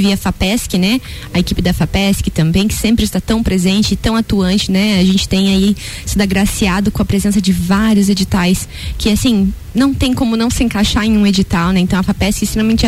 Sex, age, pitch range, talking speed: female, 20-39, 190-215 Hz, 215 wpm